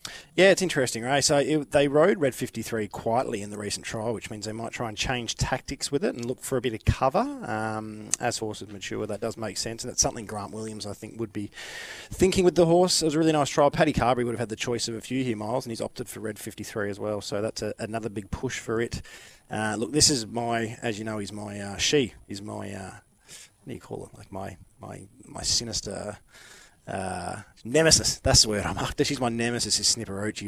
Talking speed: 240 wpm